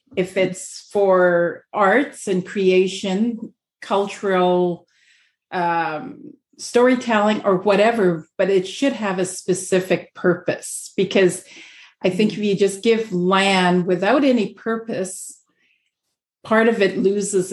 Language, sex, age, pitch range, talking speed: English, female, 50-69, 175-210 Hz, 115 wpm